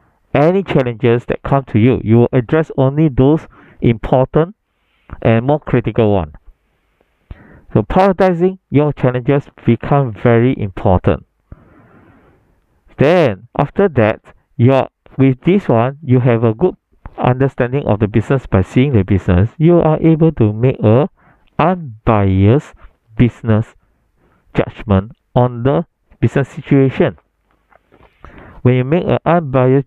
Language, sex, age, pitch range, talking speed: English, male, 50-69, 110-145 Hz, 125 wpm